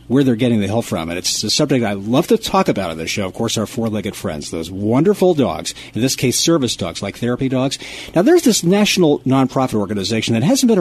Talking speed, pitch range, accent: 240 wpm, 110-145 Hz, American